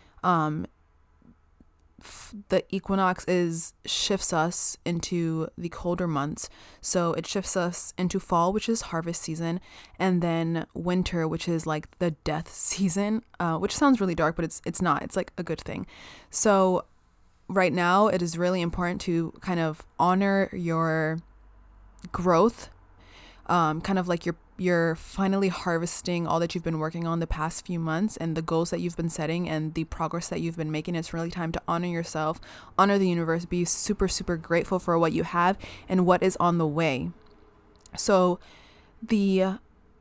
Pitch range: 160-185 Hz